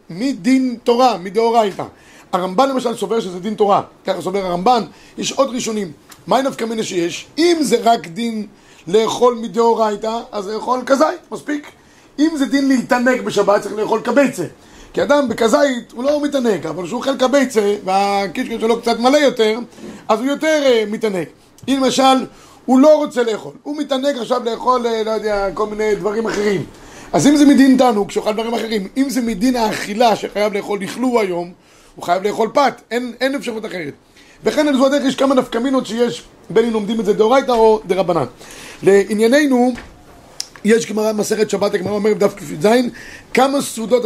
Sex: male